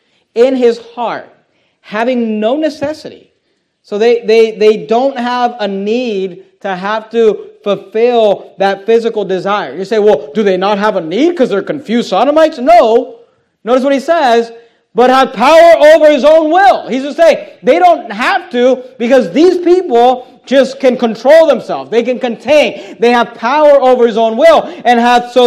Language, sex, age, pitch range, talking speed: English, male, 30-49, 205-270 Hz, 170 wpm